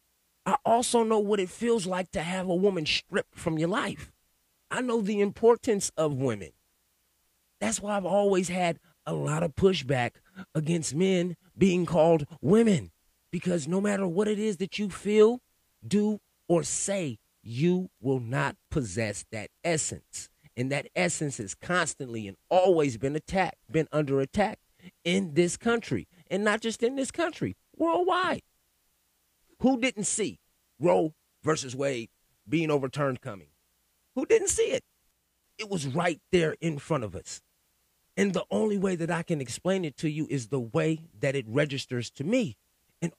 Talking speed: 160 wpm